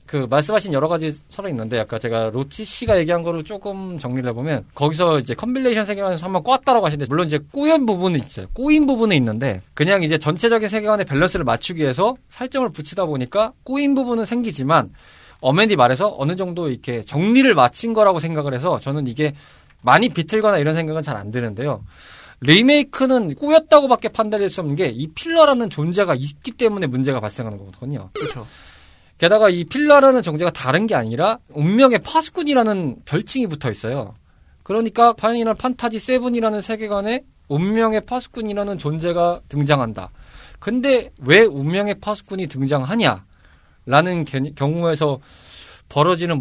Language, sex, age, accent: Korean, male, 20-39, native